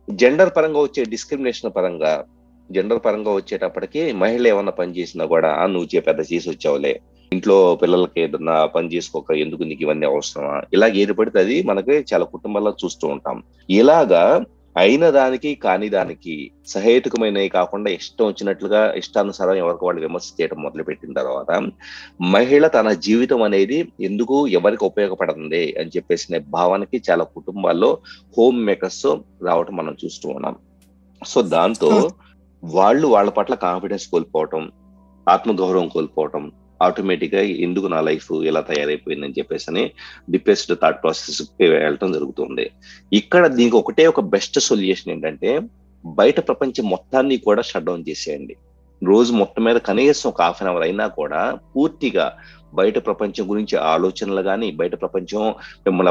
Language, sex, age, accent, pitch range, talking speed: Telugu, male, 30-49, native, 80-130 Hz, 135 wpm